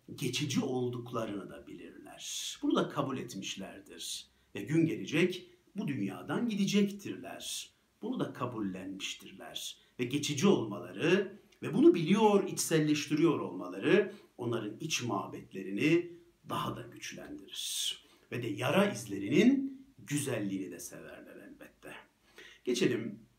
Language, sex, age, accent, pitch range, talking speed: Turkish, male, 60-79, native, 115-185 Hz, 105 wpm